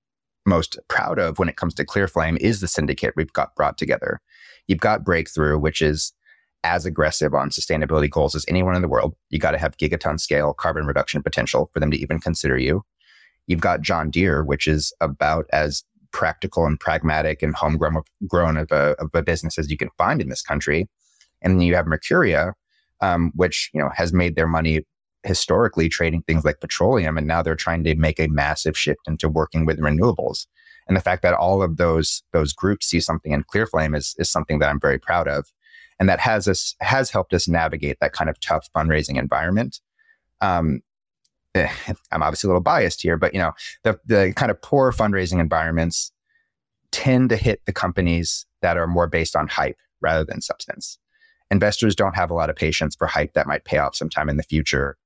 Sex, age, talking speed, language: male, 30-49, 205 wpm, English